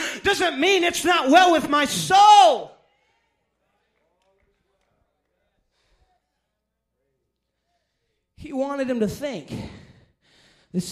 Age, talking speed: 30-49, 75 wpm